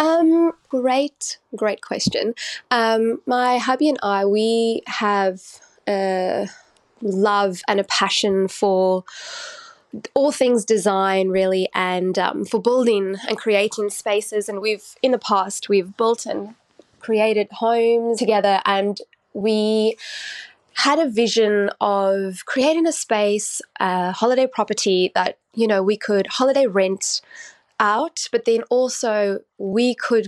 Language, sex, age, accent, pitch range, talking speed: English, female, 20-39, Australian, 195-235 Hz, 125 wpm